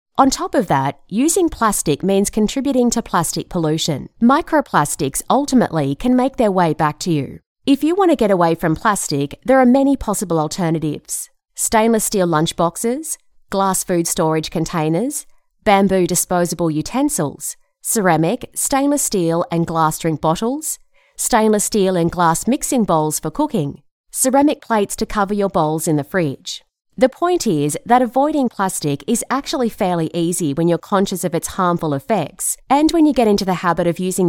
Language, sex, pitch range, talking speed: English, female, 165-250 Hz, 165 wpm